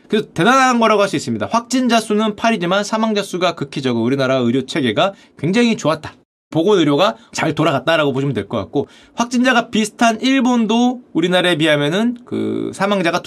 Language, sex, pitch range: Korean, male, 145-245 Hz